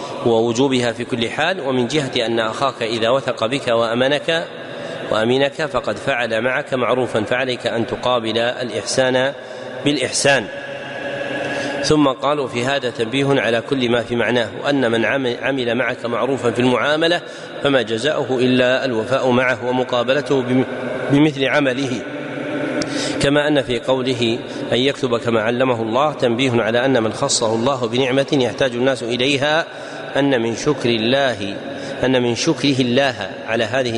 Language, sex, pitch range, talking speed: Arabic, male, 120-140 Hz, 130 wpm